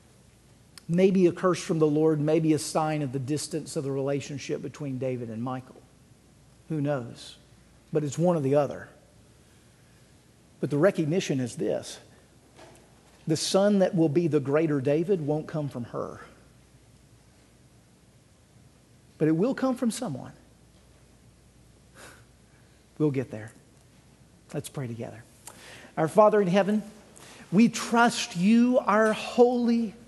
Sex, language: male, English